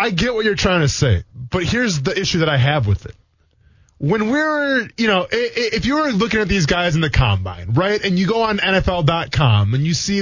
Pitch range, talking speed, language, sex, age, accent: 120-195 Hz, 230 wpm, English, male, 20-39, American